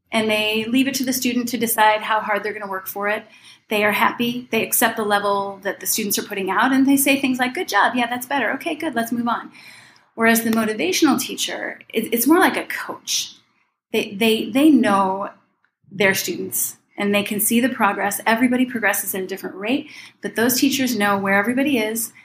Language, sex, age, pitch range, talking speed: English, female, 30-49, 205-255 Hz, 210 wpm